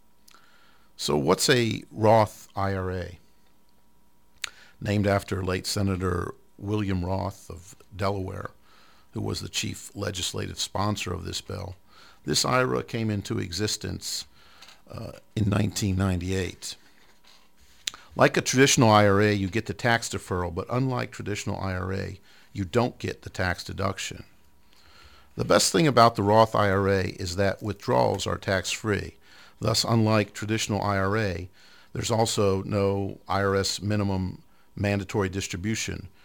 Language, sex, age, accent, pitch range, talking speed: English, male, 50-69, American, 95-110 Hz, 120 wpm